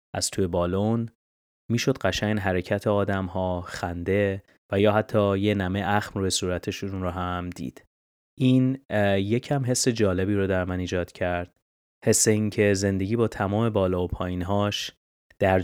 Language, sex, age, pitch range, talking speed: Persian, male, 30-49, 90-110 Hz, 155 wpm